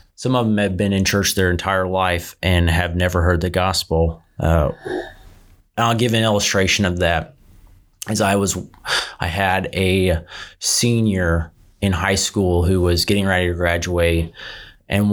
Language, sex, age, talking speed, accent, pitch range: English, male, 30-49, 160 wpm, American, 85-95 Hz